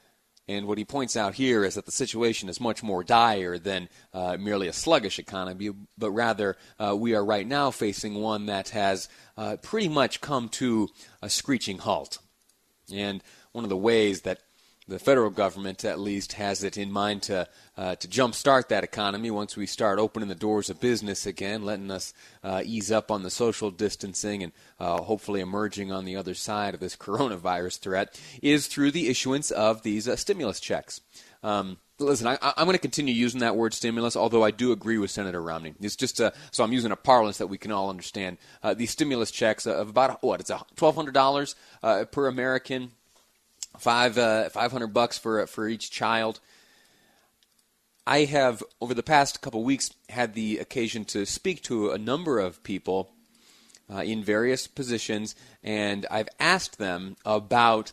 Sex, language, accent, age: male, English, American, 30-49